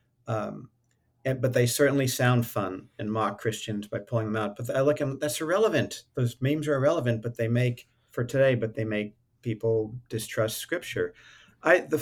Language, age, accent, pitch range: English, 50-69, American, 115-135 Hz